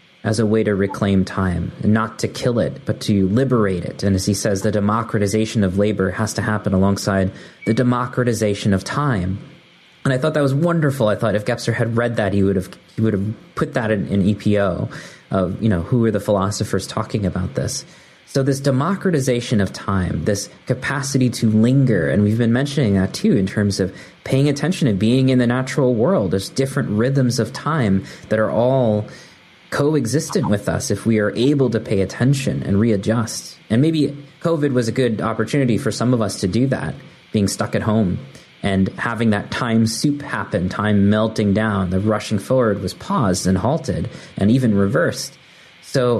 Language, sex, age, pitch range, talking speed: English, male, 20-39, 100-130 Hz, 195 wpm